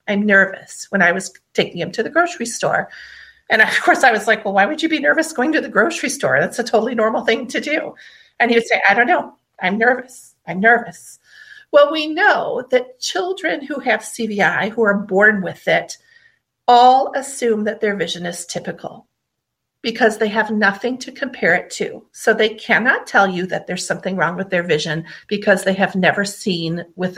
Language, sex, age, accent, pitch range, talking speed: English, female, 40-59, American, 195-265 Hz, 205 wpm